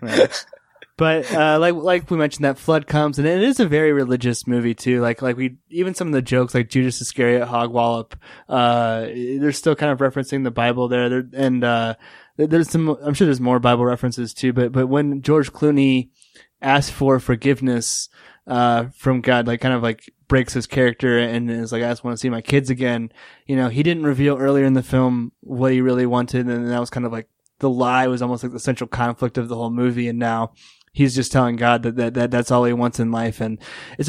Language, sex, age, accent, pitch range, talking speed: English, male, 20-39, American, 120-140 Hz, 230 wpm